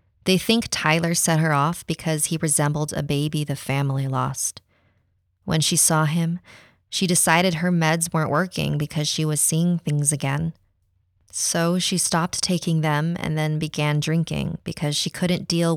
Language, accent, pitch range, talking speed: English, American, 135-165 Hz, 165 wpm